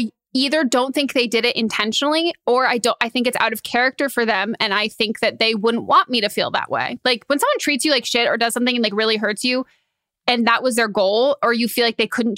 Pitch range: 215-250 Hz